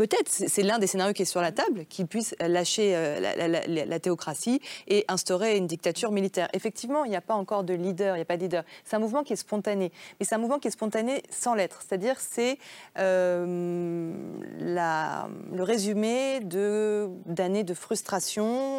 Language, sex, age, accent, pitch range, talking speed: French, female, 30-49, French, 180-225 Hz, 200 wpm